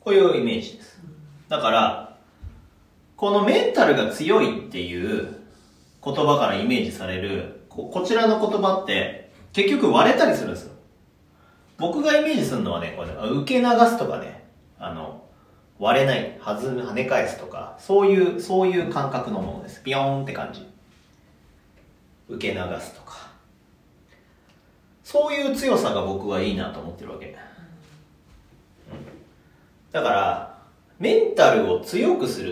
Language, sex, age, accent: Japanese, male, 40-59, native